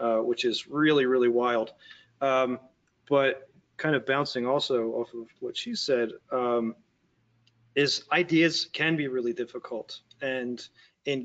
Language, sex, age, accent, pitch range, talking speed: English, male, 30-49, American, 125-150 Hz, 140 wpm